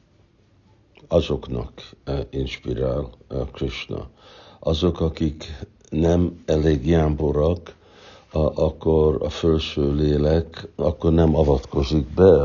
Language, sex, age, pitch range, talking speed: Hungarian, male, 60-79, 75-90 Hz, 75 wpm